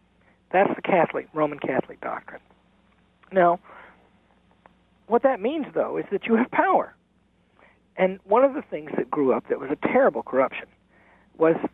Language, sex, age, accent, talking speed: English, male, 50-69, American, 155 wpm